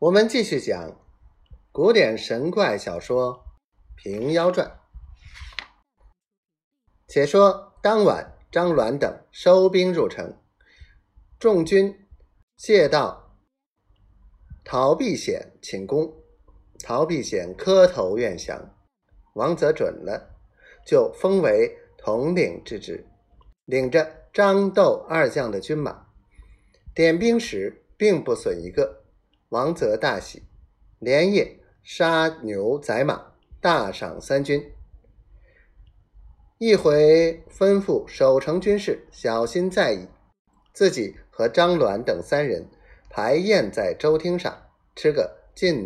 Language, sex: Chinese, male